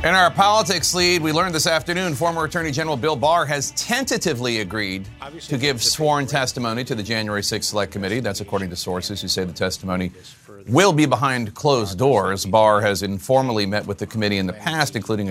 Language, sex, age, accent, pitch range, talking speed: English, male, 40-59, American, 105-145 Hz, 195 wpm